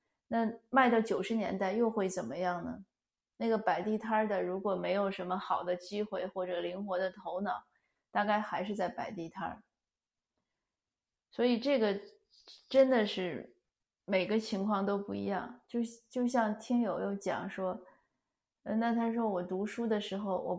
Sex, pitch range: female, 185-220 Hz